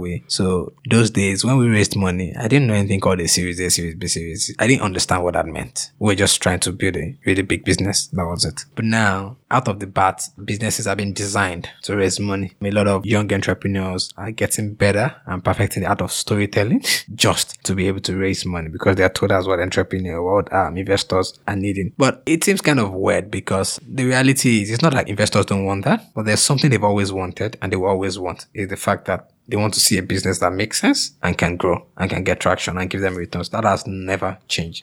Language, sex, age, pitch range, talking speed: English, male, 20-39, 95-110 Hz, 240 wpm